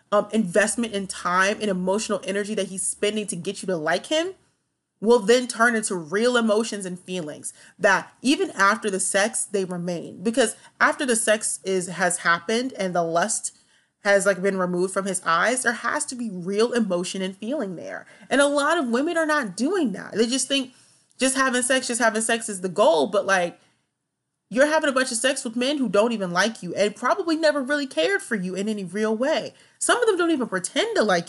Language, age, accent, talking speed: English, 30-49, American, 215 wpm